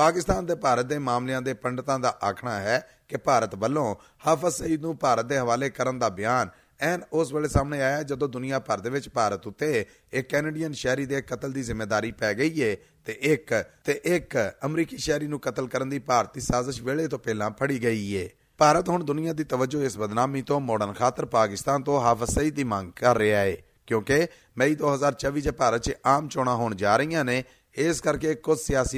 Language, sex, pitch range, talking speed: Punjabi, male, 120-145 Hz, 70 wpm